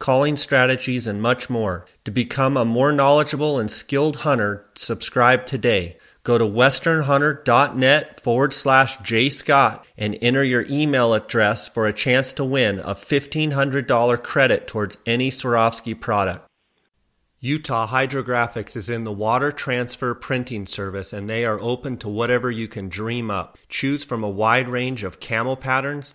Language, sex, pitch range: English, male, 115-140 Hz